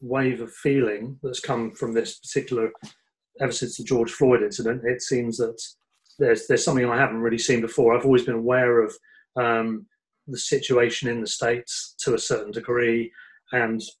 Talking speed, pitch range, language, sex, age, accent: 175 wpm, 115-140 Hz, English, male, 30-49, British